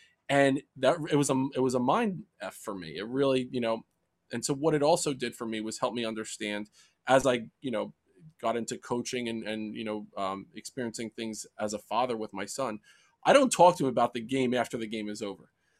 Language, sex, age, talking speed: English, male, 20-39, 230 wpm